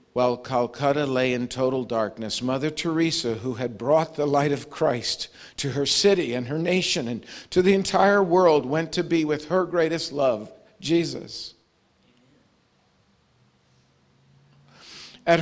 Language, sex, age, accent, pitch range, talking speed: English, male, 50-69, American, 115-160 Hz, 135 wpm